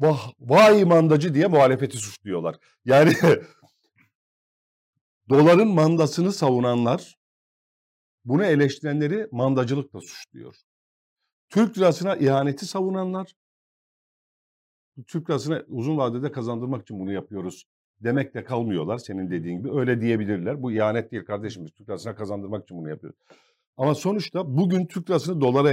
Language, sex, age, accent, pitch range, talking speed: Turkish, male, 50-69, native, 110-155 Hz, 120 wpm